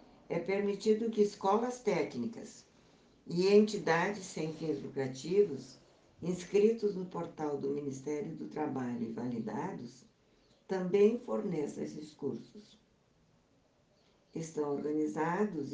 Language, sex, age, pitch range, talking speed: Portuguese, female, 60-79, 150-205 Hz, 95 wpm